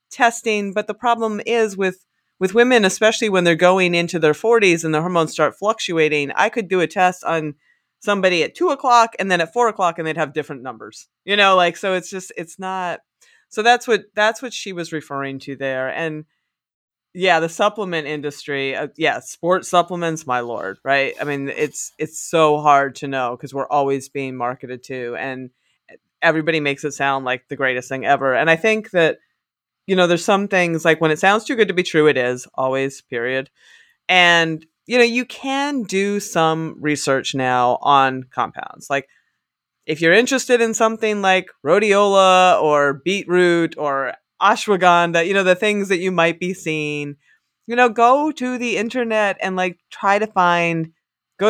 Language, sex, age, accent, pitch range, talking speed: English, female, 30-49, American, 145-205 Hz, 185 wpm